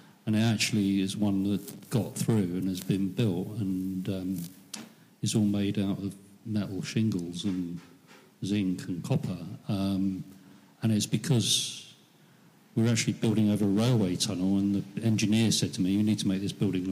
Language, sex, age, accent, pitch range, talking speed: English, male, 50-69, British, 100-115 Hz, 165 wpm